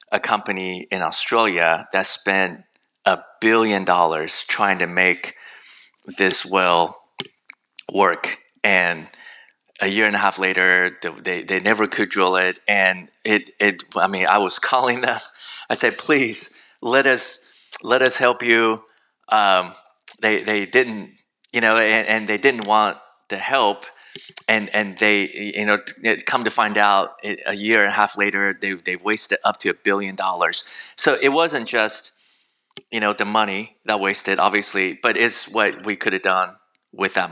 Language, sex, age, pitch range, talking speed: English, male, 20-39, 95-105 Hz, 165 wpm